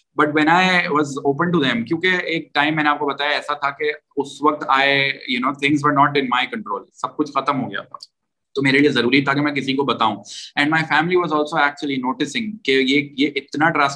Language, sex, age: Urdu, male, 20-39